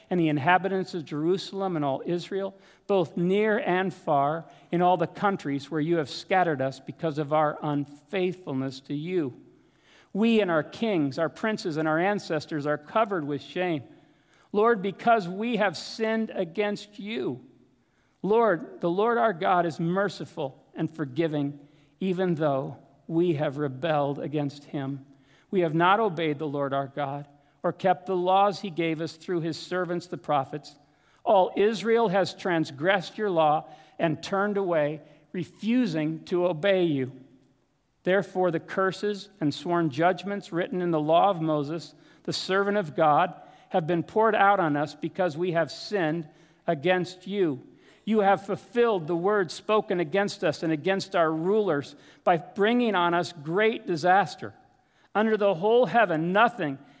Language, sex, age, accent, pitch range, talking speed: English, male, 50-69, American, 155-195 Hz, 155 wpm